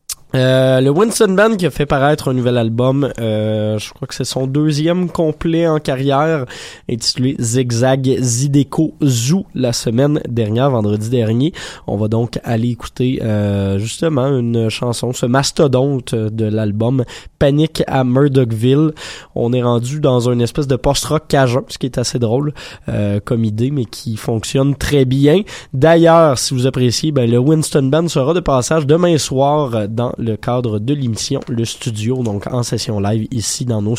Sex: male